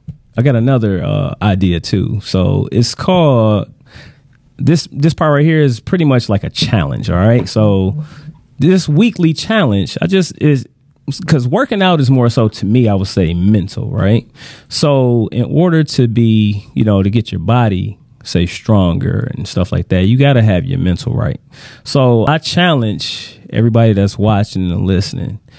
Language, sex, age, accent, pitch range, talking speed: English, male, 30-49, American, 105-140 Hz, 175 wpm